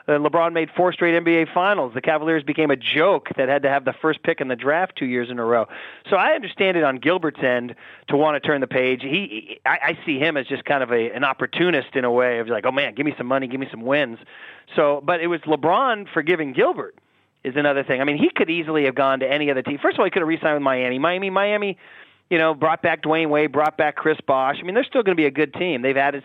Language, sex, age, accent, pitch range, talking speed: English, male, 30-49, American, 140-180 Hz, 280 wpm